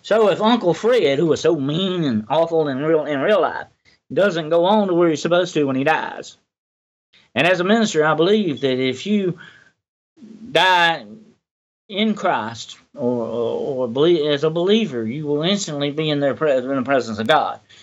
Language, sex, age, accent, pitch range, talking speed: English, male, 40-59, American, 135-185 Hz, 180 wpm